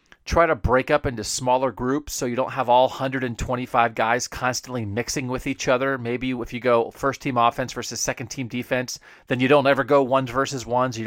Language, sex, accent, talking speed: English, male, American, 210 wpm